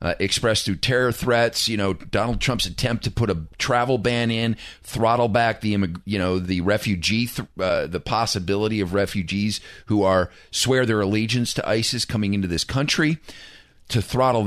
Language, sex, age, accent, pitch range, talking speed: English, male, 40-59, American, 100-125 Hz, 175 wpm